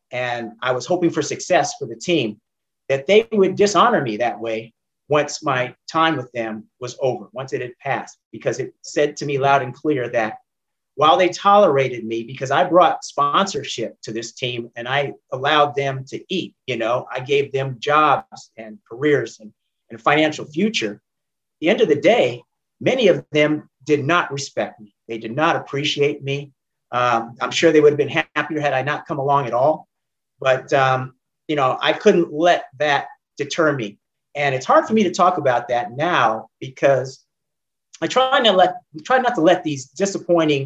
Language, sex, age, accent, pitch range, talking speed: English, male, 40-59, American, 125-165 Hz, 185 wpm